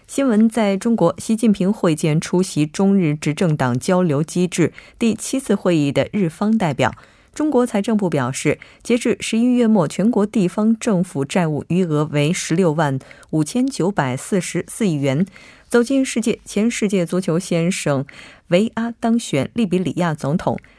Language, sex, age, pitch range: Korean, female, 20-39, 155-215 Hz